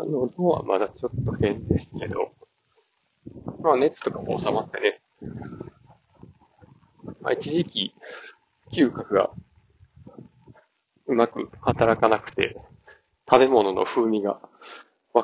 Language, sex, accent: Japanese, male, native